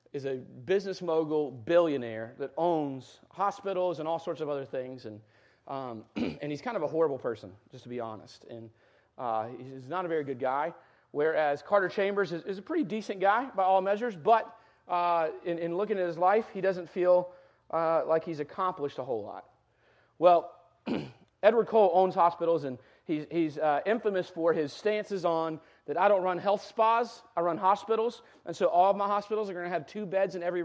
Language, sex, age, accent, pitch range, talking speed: English, male, 40-59, American, 140-195 Hz, 200 wpm